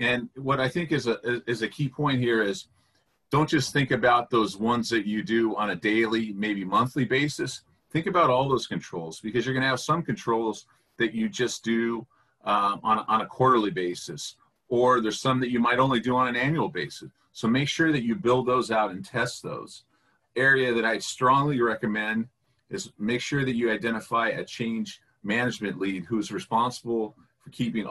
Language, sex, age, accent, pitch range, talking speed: English, male, 40-59, American, 110-130 Hz, 195 wpm